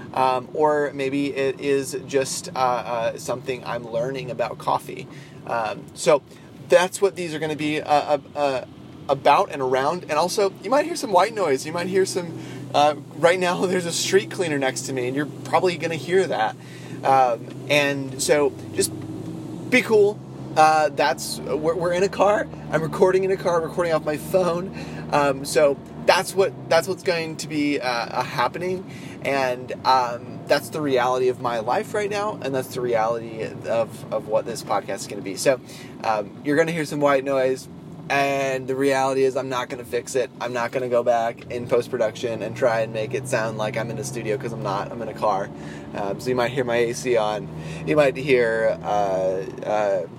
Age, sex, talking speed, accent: 30-49, male, 205 wpm, American